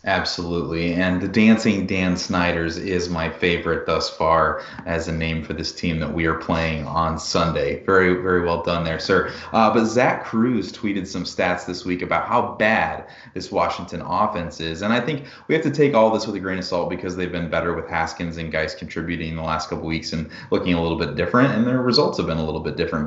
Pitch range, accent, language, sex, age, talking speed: 85-110 Hz, American, English, male, 30-49, 225 wpm